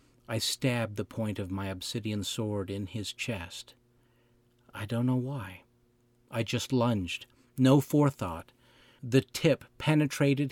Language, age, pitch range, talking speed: English, 50-69, 105-130 Hz, 130 wpm